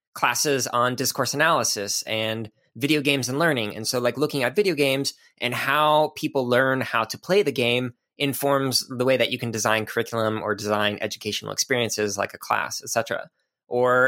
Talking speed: 185 wpm